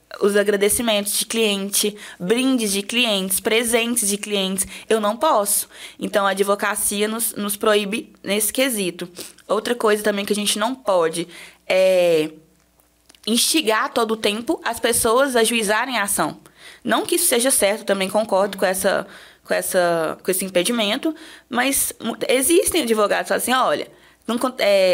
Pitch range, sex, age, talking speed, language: 195-245 Hz, female, 20-39, 140 wpm, Portuguese